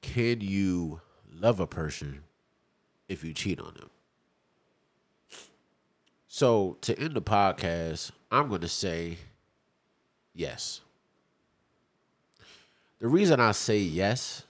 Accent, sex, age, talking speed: American, male, 30-49, 105 wpm